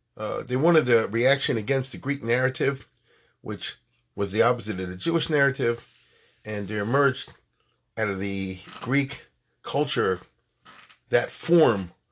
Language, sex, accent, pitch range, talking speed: English, male, American, 105-145 Hz, 135 wpm